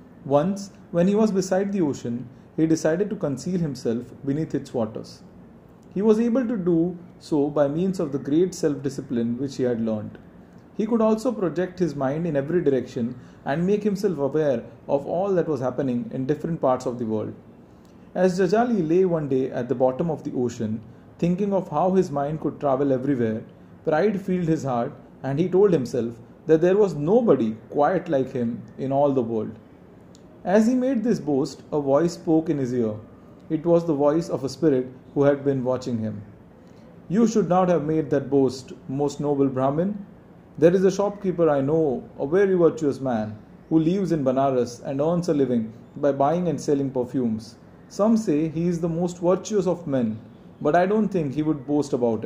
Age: 30-49